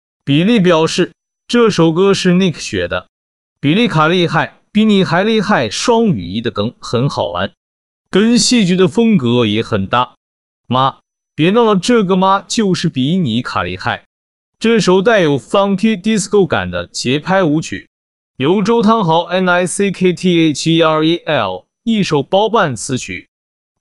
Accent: native